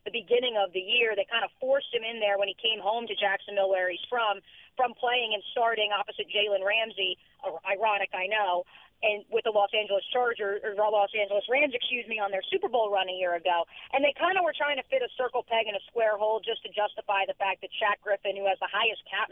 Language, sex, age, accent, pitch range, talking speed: English, female, 40-59, American, 200-245 Hz, 245 wpm